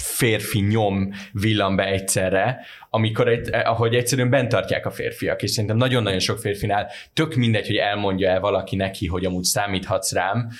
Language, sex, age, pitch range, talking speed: Hungarian, male, 20-39, 95-115 Hz, 160 wpm